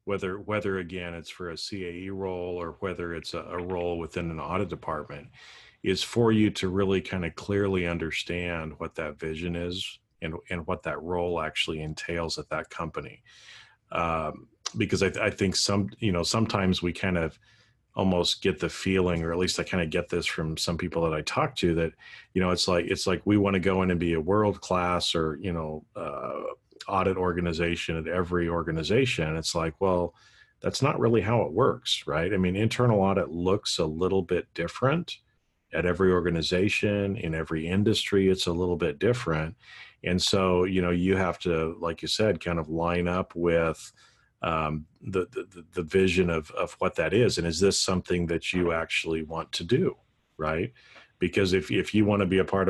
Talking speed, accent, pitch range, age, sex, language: 200 wpm, American, 85-95 Hz, 40-59, male, English